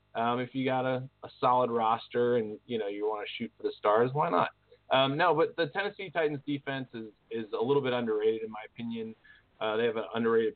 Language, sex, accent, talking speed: English, male, American, 235 wpm